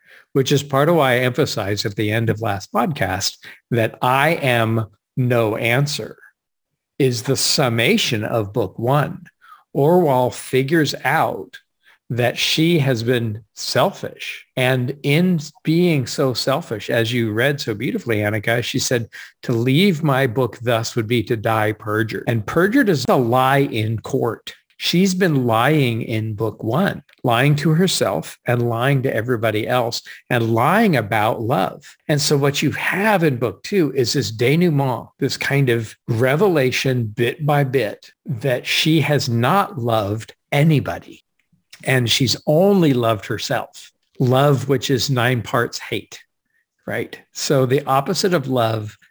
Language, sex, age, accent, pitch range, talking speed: English, male, 50-69, American, 115-150 Hz, 150 wpm